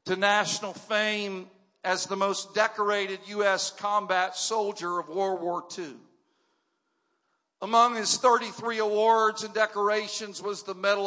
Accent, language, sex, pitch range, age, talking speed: American, English, male, 195-230 Hz, 50-69, 125 wpm